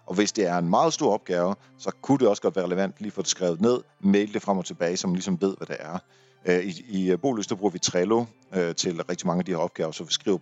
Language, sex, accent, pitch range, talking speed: Danish, male, native, 85-120 Hz, 275 wpm